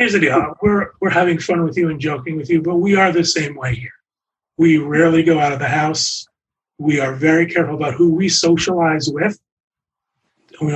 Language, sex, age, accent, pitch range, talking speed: English, male, 30-49, American, 135-170 Hz, 205 wpm